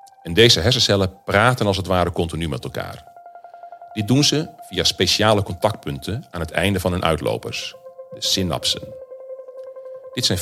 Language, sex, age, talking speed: Dutch, male, 40-59, 150 wpm